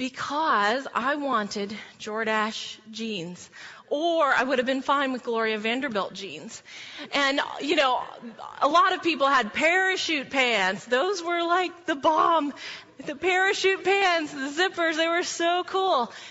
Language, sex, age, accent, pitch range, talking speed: English, female, 30-49, American, 240-335 Hz, 145 wpm